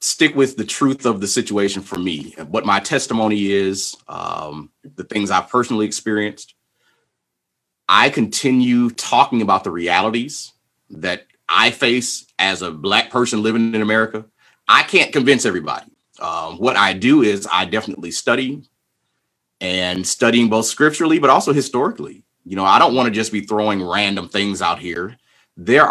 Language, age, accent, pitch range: English, 30-49, American, 100-125 Hz